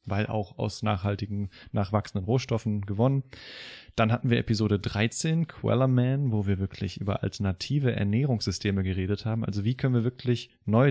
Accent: German